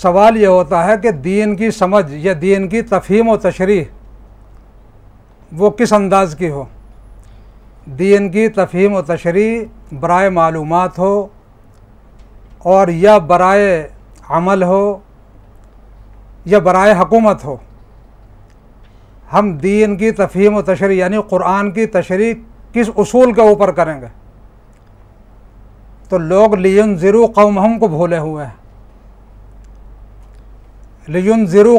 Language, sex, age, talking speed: Urdu, male, 60-79, 115 wpm